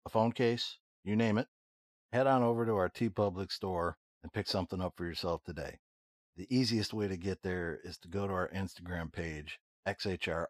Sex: male